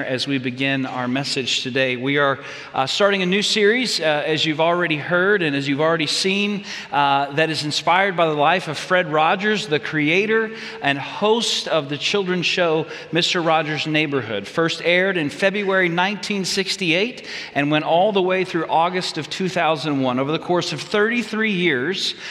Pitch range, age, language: 150-190 Hz, 40-59, English